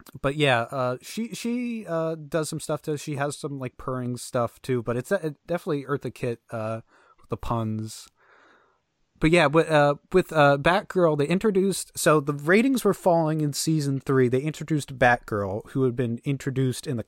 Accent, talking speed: American, 190 wpm